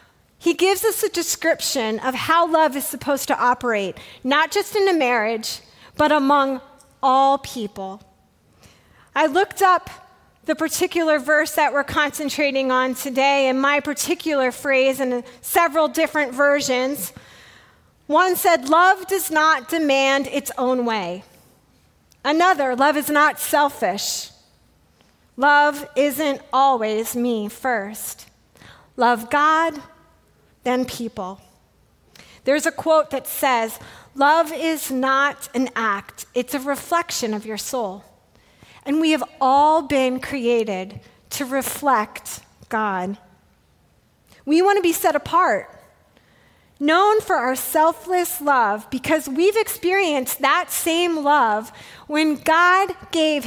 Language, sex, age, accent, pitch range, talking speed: English, female, 40-59, American, 255-320 Hz, 120 wpm